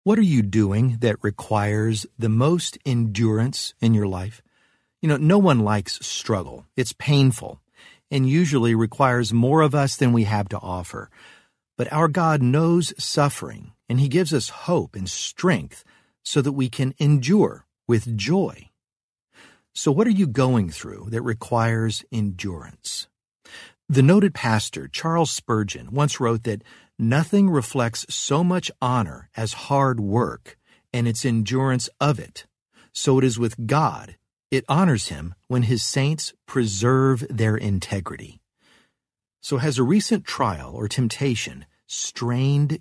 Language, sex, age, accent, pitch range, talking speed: English, male, 50-69, American, 110-145 Hz, 145 wpm